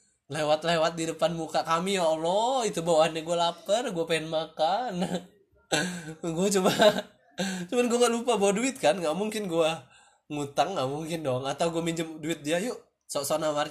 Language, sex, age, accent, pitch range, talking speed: Indonesian, male, 20-39, native, 135-175 Hz, 160 wpm